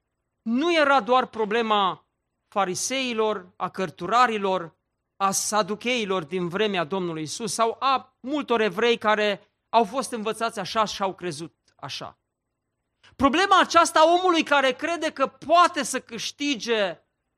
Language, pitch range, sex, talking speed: Romanian, 185-260 Hz, male, 125 wpm